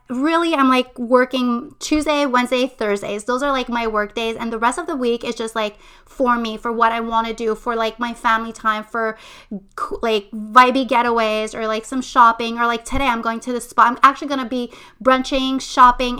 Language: English